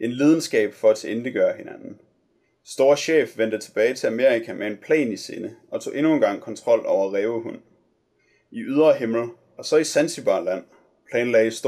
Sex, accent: male, native